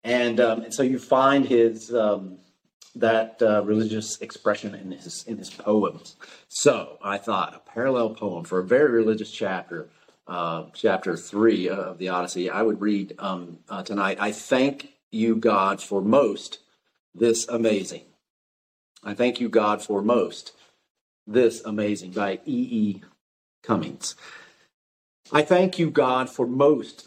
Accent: American